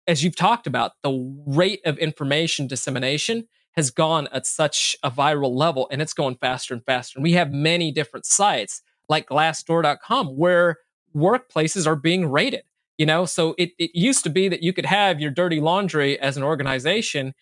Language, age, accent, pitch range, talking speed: English, 30-49, American, 145-185 Hz, 185 wpm